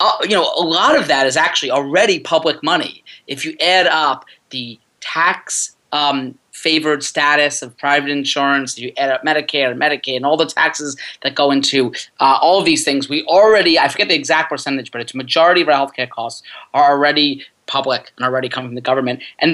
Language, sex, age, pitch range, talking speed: English, male, 30-49, 125-160 Hz, 205 wpm